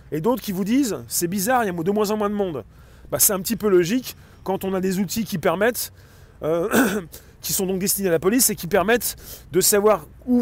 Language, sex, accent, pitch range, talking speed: French, male, French, 155-200 Hz, 260 wpm